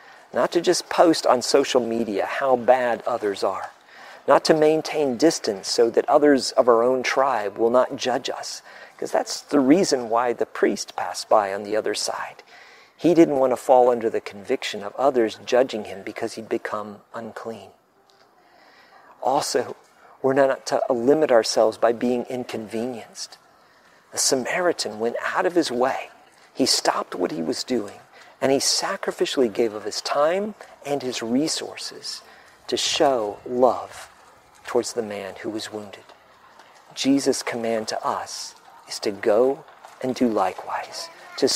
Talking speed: 155 wpm